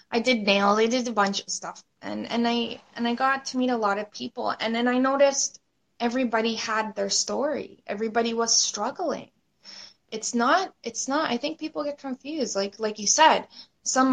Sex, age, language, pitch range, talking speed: female, 20-39, English, 210-255 Hz, 195 wpm